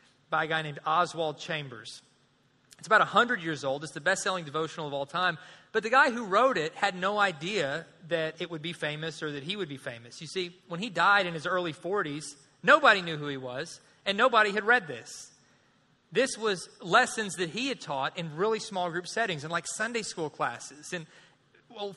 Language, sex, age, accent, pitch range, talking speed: English, male, 30-49, American, 160-210 Hz, 210 wpm